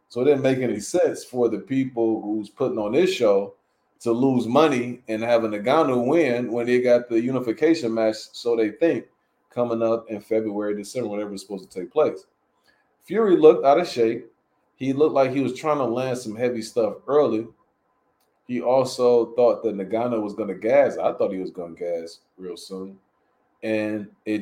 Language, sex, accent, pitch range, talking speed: English, male, American, 110-130 Hz, 195 wpm